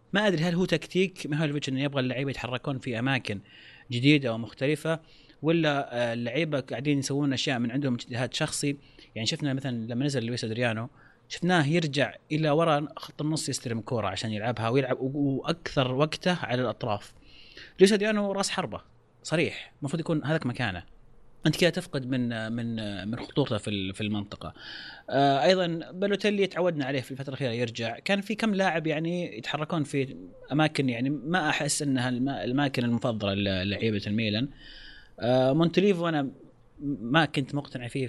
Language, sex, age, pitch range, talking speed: Arabic, male, 30-49, 120-155 Hz, 150 wpm